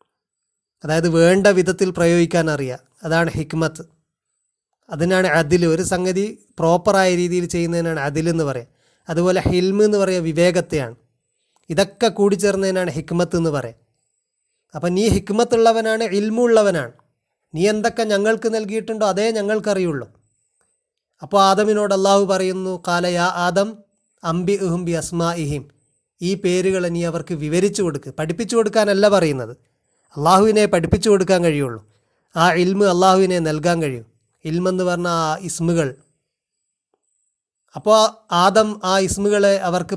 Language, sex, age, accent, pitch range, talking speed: Malayalam, male, 30-49, native, 160-205 Hz, 110 wpm